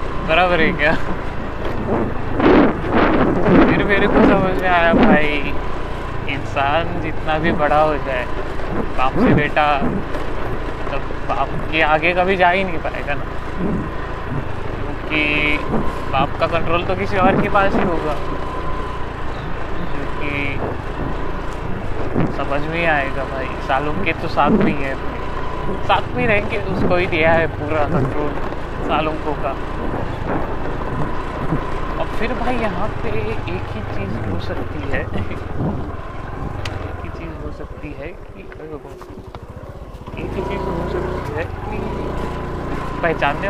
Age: 20-39